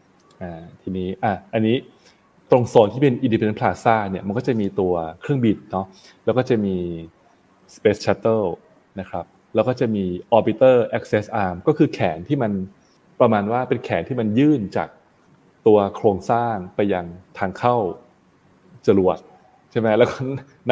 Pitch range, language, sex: 95-120 Hz, Thai, male